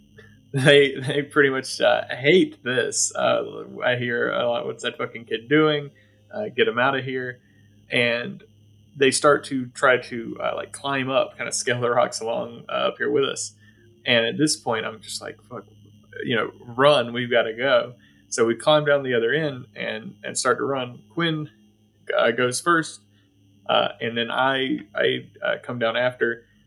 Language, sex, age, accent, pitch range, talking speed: English, male, 20-39, American, 110-135 Hz, 190 wpm